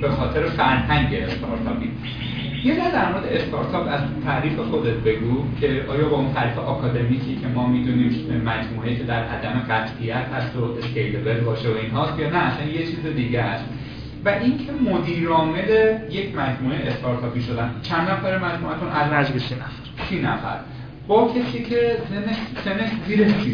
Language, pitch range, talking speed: Persian, 120-160 Hz, 170 wpm